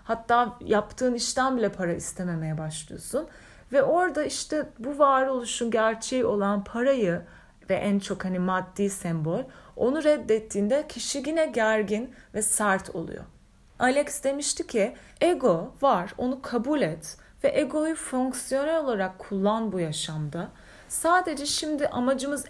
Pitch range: 190-275 Hz